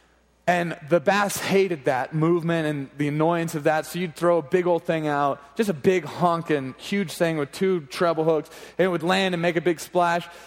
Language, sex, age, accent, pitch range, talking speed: English, male, 30-49, American, 155-185 Hz, 220 wpm